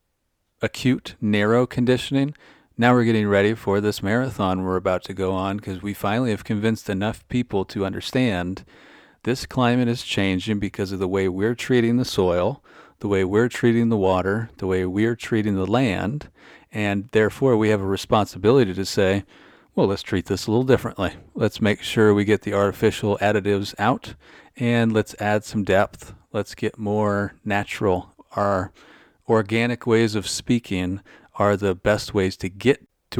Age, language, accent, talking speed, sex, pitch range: 40-59, English, American, 170 wpm, male, 95-115 Hz